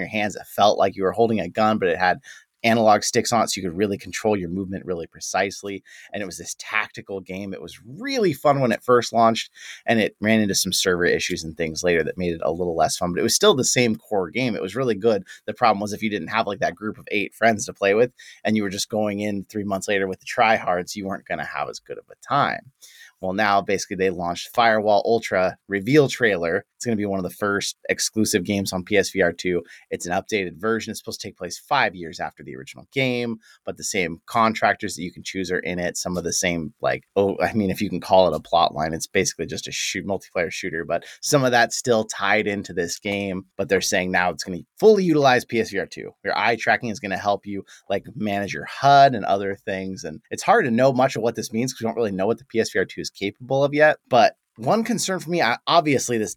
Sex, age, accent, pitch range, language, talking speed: male, 30-49, American, 95-120 Hz, English, 260 wpm